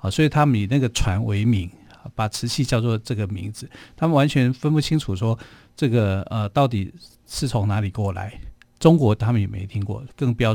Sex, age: male, 50-69